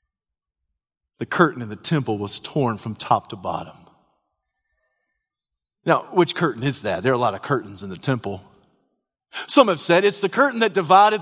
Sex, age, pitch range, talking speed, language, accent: male, 40-59, 150-240 Hz, 175 wpm, English, American